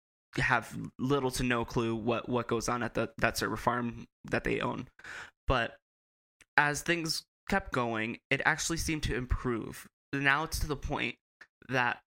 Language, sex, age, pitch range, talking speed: English, male, 20-39, 115-130 Hz, 165 wpm